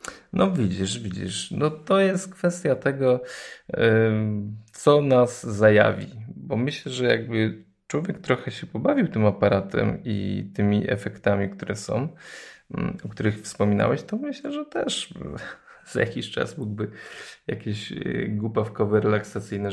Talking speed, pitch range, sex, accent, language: 120 wpm, 100-135 Hz, male, native, Polish